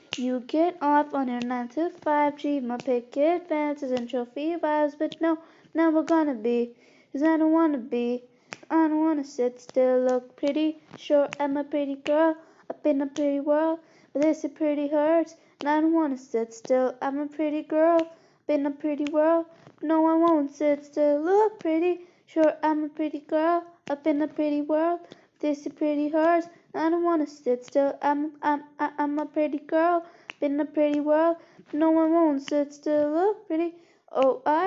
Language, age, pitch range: English, 20-39, 275-320 Hz